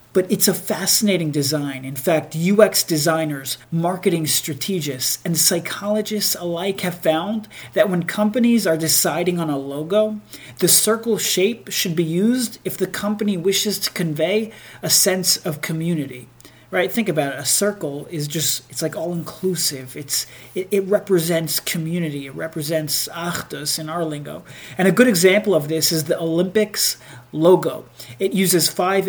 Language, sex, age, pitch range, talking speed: English, male, 40-59, 150-190 Hz, 155 wpm